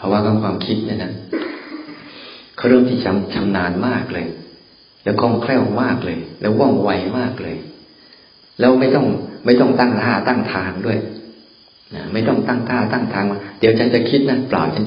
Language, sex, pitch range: Thai, male, 100-120 Hz